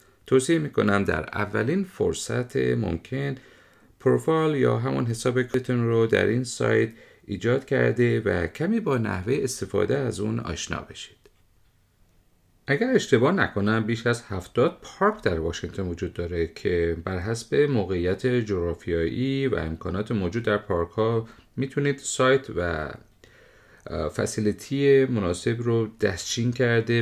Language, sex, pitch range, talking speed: Persian, male, 95-125 Hz, 125 wpm